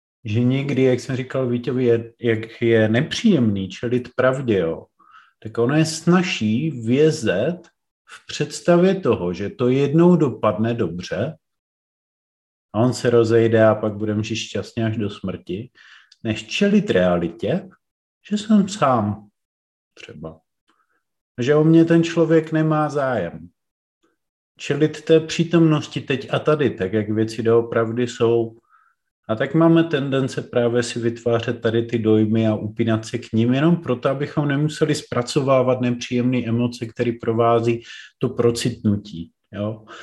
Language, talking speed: Czech, 135 wpm